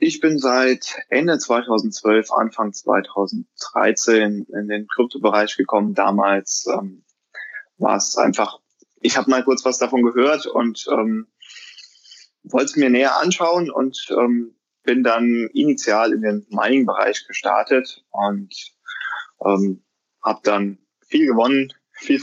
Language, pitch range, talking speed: German, 105-130 Hz, 120 wpm